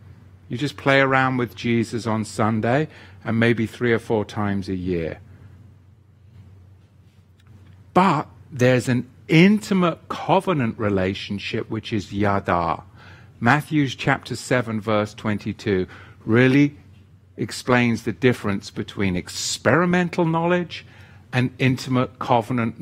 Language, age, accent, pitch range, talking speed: English, 50-69, British, 100-135 Hz, 105 wpm